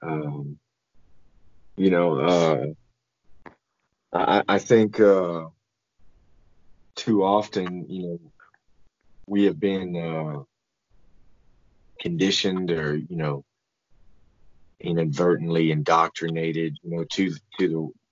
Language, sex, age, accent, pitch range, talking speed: English, male, 30-49, American, 80-100 Hz, 90 wpm